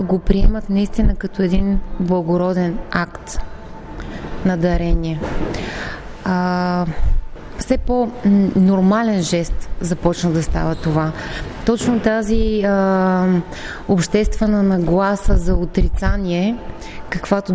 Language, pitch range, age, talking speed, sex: Bulgarian, 175-205 Hz, 20-39, 85 wpm, female